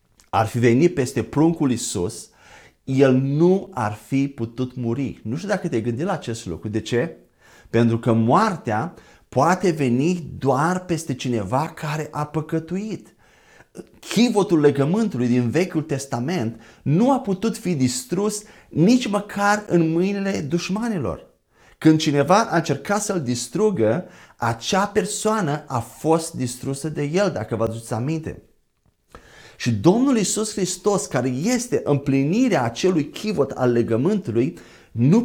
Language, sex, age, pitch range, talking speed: Romanian, male, 30-49, 130-190 Hz, 130 wpm